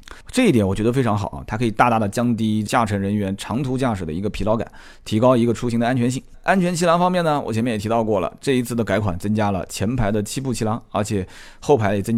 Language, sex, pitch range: Chinese, male, 100-135 Hz